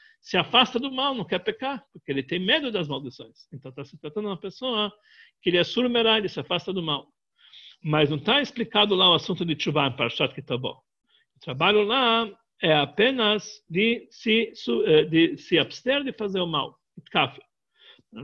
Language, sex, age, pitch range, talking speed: Portuguese, male, 60-79, 175-230 Hz, 190 wpm